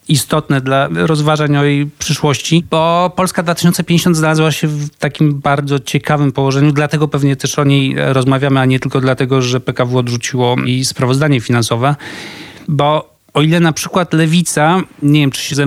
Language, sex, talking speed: Polish, male, 165 wpm